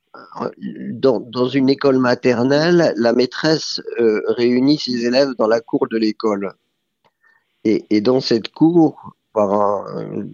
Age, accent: 50-69, French